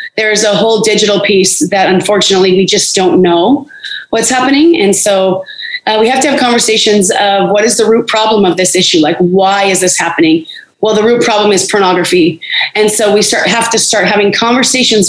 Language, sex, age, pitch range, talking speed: English, female, 30-49, 195-255 Hz, 205 wpm